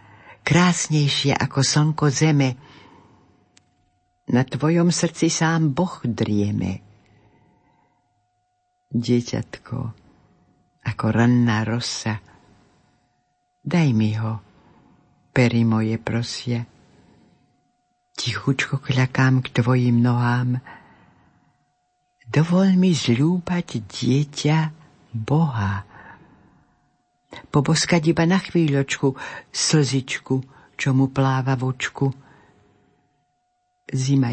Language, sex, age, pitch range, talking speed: Slovak, female, 60-79, 120-150 Hz, 70 wpm